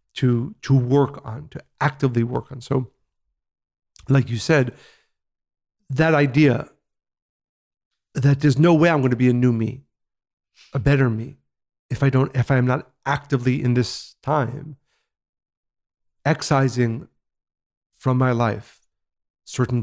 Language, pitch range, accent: English, 120-140 Hz, American